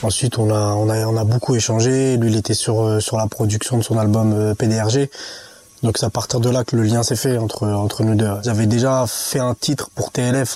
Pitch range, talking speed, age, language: 110-130 Hz, 250 wpm, 20-39, French